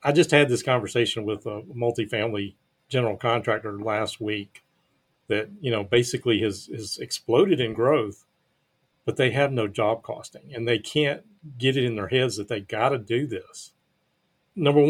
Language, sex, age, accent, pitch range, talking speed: English, male, 40-59, American, 110-130 Hz, 170 wpm